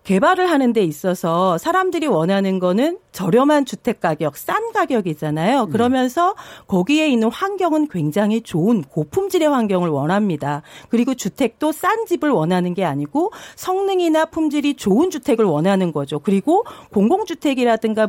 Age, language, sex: 40-59, Korean, female